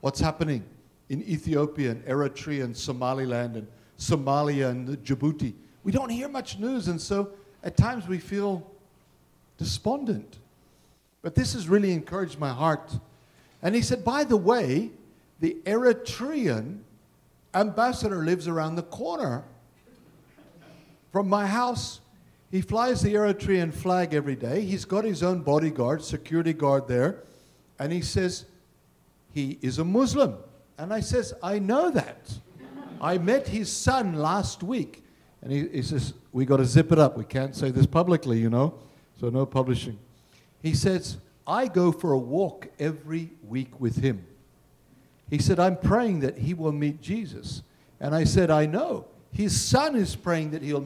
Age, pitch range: 60-79, 135-195 Hz